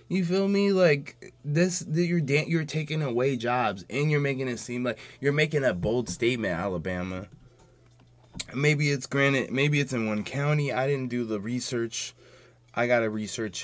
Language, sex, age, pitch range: English, male, 20-39, 100-125 Hz